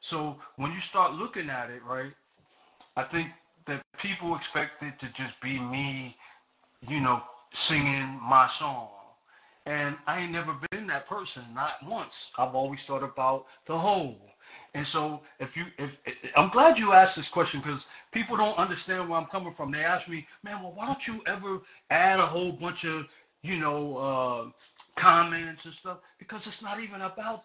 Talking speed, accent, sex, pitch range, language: 180 wpm, American, male, 140-185 Hz, English